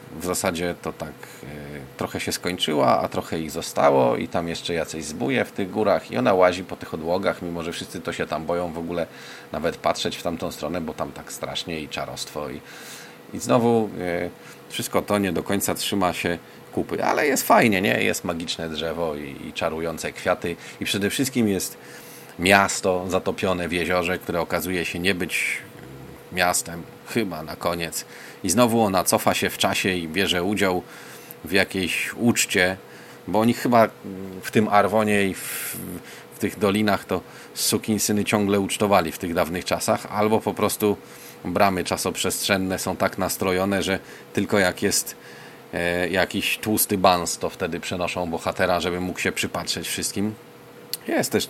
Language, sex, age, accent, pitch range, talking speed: Polish, male, 40-59, native, 85-100 Hz, 165 wpm